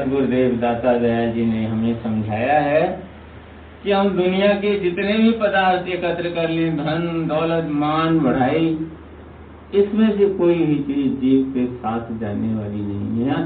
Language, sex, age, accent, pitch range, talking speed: Hindi, male, 60-79, native, 120-175 Hz, 150 wpm